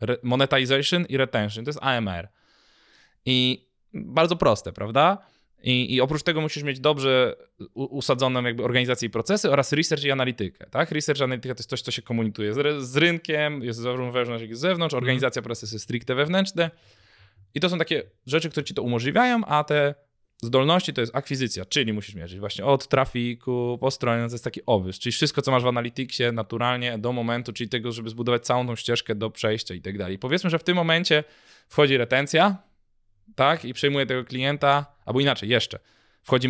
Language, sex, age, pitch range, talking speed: Polish, male, 20-39, 110-140 Hz, 185 wpm